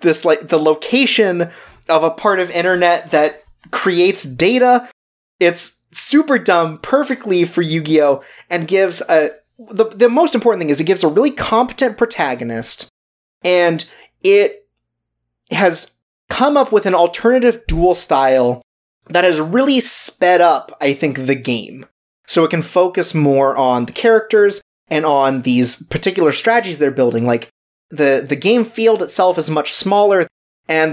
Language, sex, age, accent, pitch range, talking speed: English, male, 30-49, American, 140-190 Hz, 150 wpm